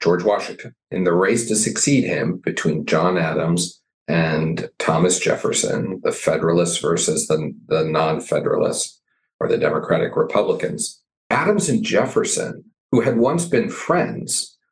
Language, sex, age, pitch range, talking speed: English, male, 50-69, 90-145 Hz, 135 wpm